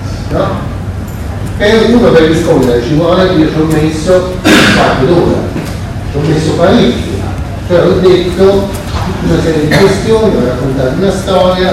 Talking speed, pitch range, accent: 150 wpm, 105-155 Hz, native